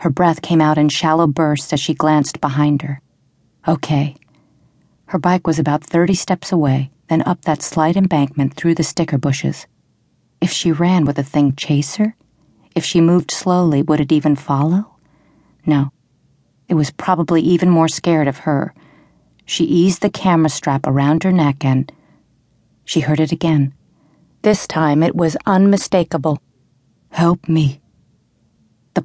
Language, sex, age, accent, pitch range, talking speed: English, female, 40-59, American, 145-175 Hz, 155 wpm